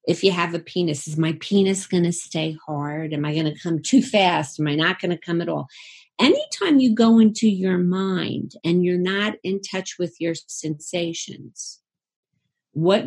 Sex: female